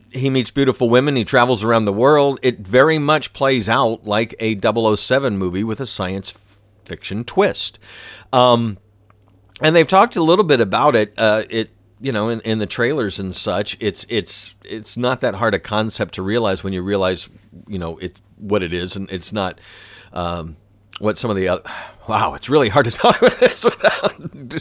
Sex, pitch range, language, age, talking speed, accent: male, 100-120 Hz, English, 50-69, 195 wpm, American